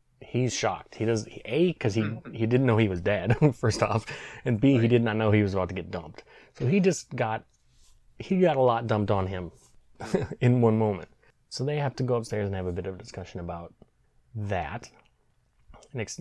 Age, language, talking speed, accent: 30-49, English, 210 wpm, American